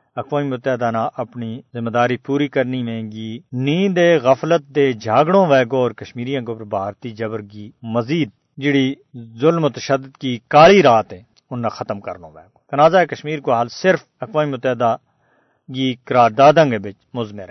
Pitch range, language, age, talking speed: 110-140 Hz, Urdu, 50-69, 135 wpm